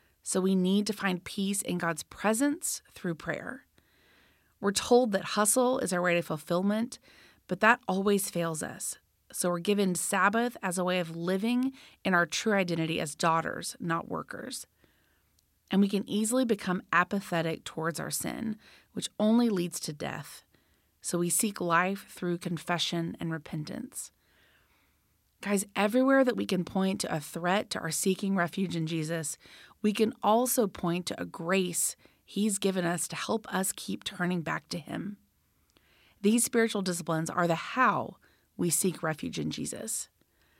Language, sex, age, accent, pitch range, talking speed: English, female, 30-49, American, 170-215 Hz, 160 wpm